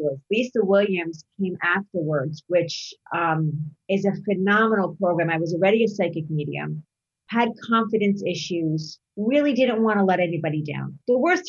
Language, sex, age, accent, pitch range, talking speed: English, female, 40-59, American, 170-210 Hz, 145 wpm